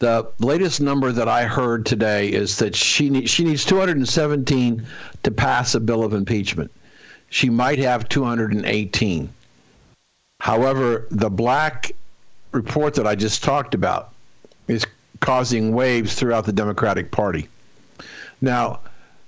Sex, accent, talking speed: male, American, 130 wpm